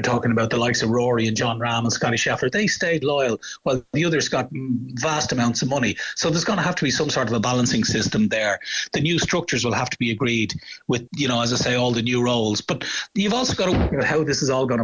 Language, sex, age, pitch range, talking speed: English, male, 30-49, 115-140 Hz, 270 wpm